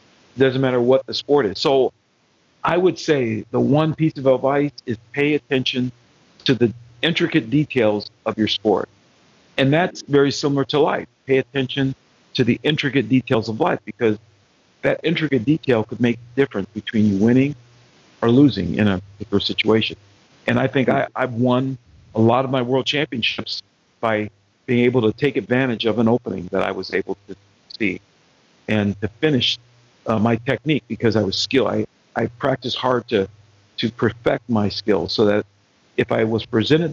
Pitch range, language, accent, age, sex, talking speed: 105-130 Hz, Swedish, American, 50-69, male, 175 wpm